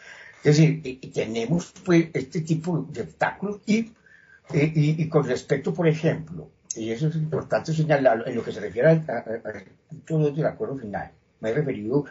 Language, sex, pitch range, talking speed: Spanish, male, 105-155 Hz, 165 wpm